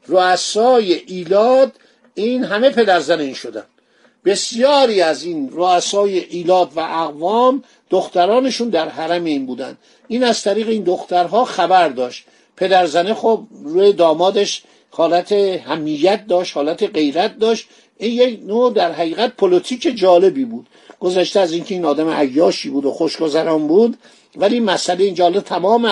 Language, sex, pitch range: Persian, male, 170-230 Hz